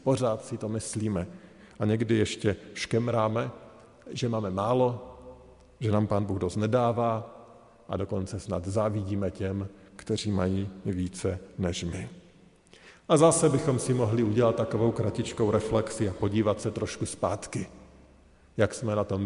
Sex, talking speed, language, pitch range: male, 140 wpm, Slovak, 100-115 Hz